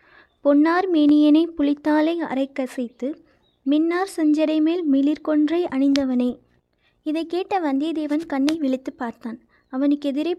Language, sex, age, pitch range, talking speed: Tamil, female, 20-39, 270-310 Hz, 90 wpm